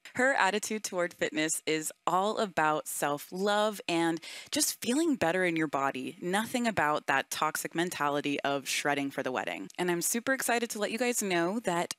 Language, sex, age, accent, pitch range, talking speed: English, female, 20-39, American, 165-230 Hz, 175 wpm